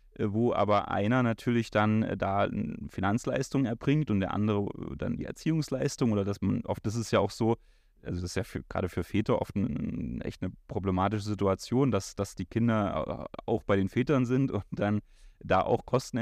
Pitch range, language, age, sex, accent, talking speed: 100-125 Hz, German, 30-49, male, German, 190 wpm